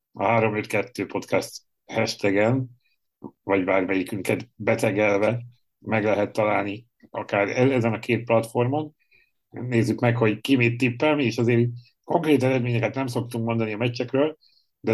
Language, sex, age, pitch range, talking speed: Hungarian, male, 60-79, 105-120 Hz, 130 wpm